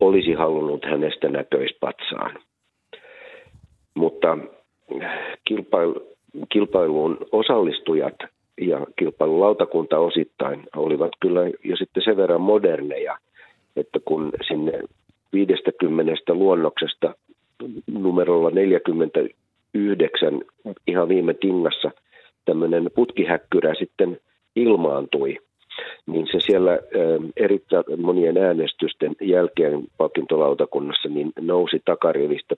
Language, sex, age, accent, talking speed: Finnish, male, 50-69, native, 75 wpm